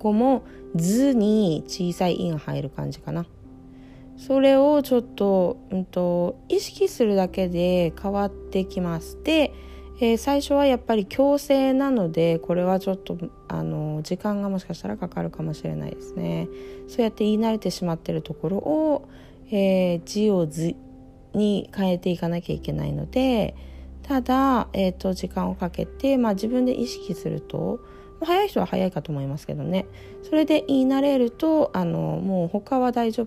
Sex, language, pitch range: female, Japanese, 150-230 Hz